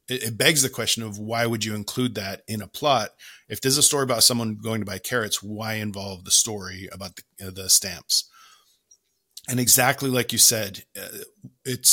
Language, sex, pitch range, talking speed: English, male, 105-125 Hz, 195 wpm